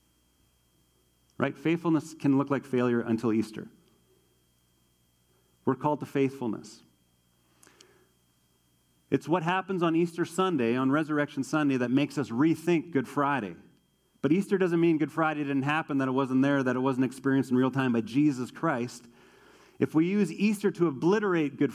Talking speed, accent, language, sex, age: 155 wpm, American, English, male, 40-59